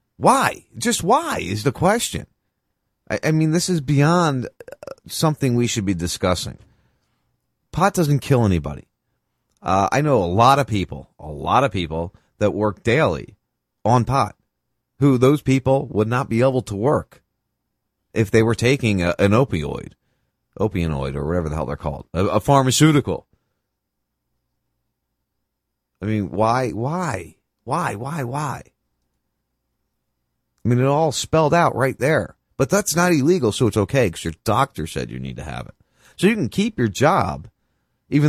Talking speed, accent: 155 wpm, American